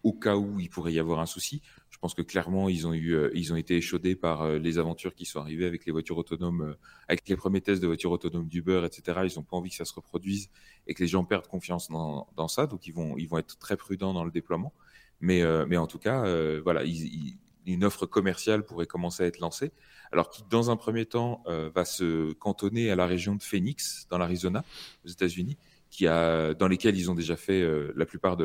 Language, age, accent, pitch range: French, 30-49, French, 85-95 Hz